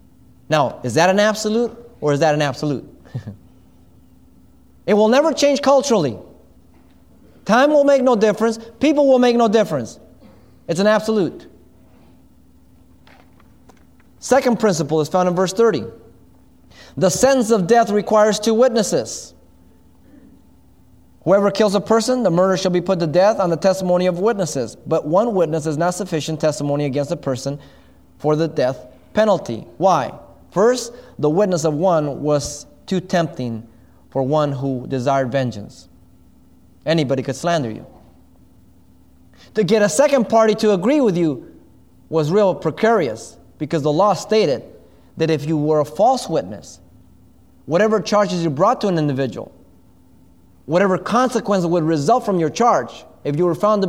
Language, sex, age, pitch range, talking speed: English, male, 30-49, 135-215 Hz, 150 wpm